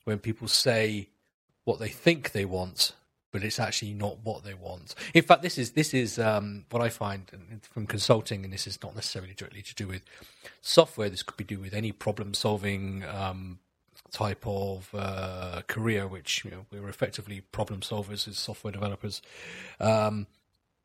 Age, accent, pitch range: 30-49, British, 100-120 Hz